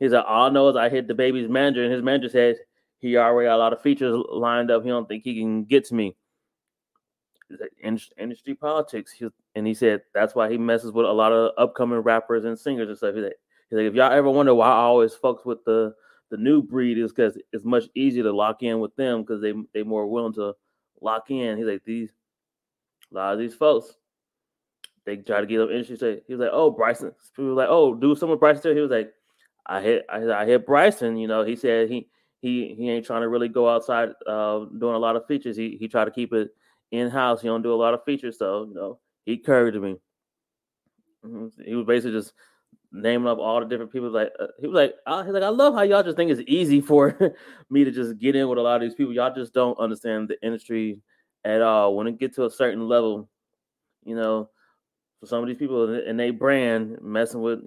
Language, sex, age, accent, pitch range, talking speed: English, male, 20-39, American, 110-130 Hz, 240 wpm